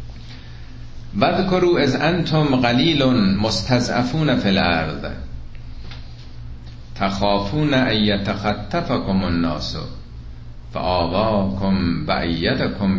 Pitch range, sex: 85-125 Hz, male